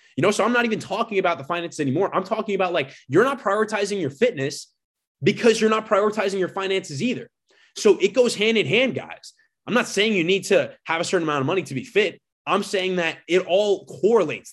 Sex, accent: male, American